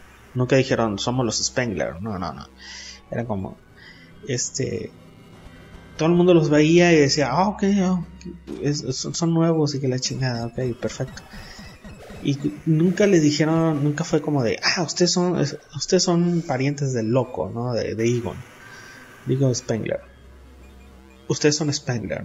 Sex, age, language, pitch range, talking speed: male, 30-49, Spanish, 125-165 Hz, 150 wpm